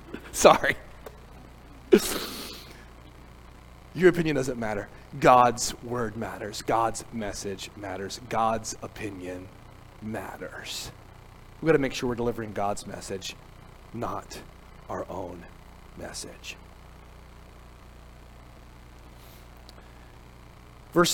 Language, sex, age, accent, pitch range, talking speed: English, male, 30-49, American, 95-145 Hz, 80 wpm